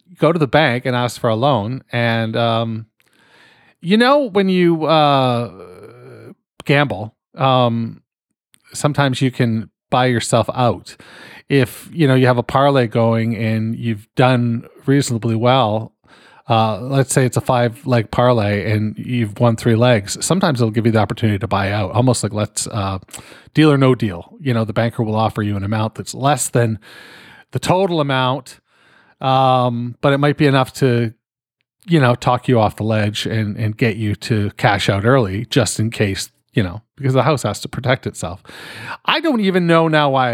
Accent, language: American, English